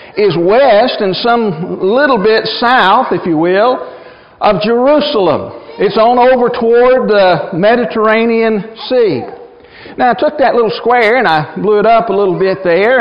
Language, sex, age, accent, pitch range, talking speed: English, male, 60-79, American, 205-255 Hz, 155 wpm